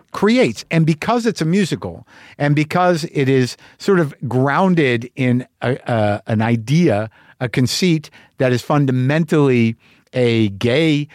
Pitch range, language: 125-160 Hz, English